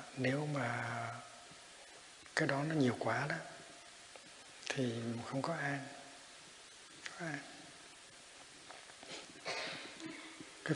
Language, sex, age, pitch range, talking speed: Vietnamese, male, 60-79, 120-145 Hz, 75 wpm